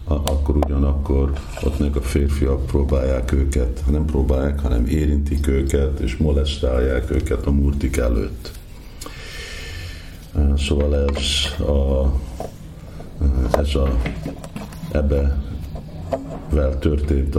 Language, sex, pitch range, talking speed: Hungarian, male, 70-80 Hz, 85 wpm